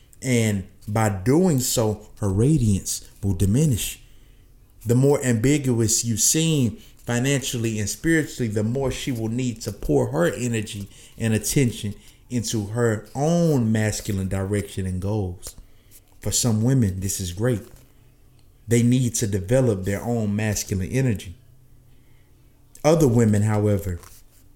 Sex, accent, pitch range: male, American, 105-130 Hz